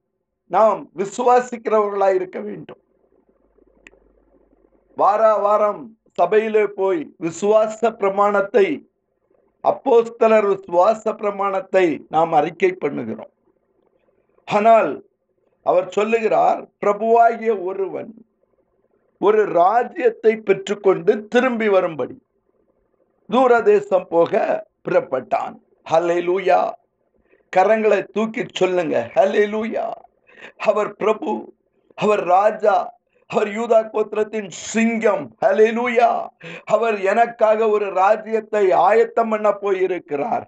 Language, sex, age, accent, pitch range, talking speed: Tamil, male, 50-69, native, 200-235 Hz, 65 wpm